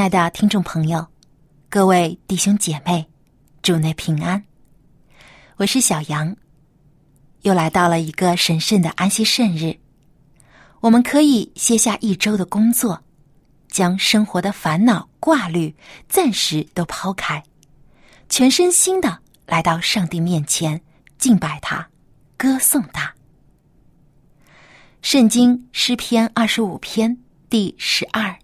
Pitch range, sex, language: 150-220 Hz, female, Chinese